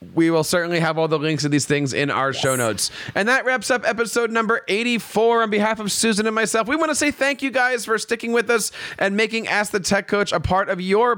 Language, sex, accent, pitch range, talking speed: English, male, American, 155-215 Hz, 260 wpm